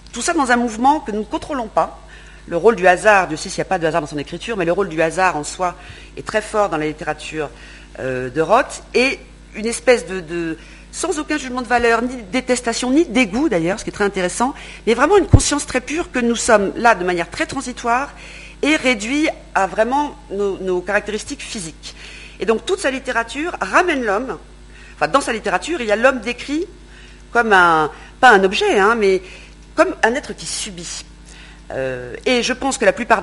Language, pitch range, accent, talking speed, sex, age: French, 160-250 Hz, French, 215 wpm, female, 40-59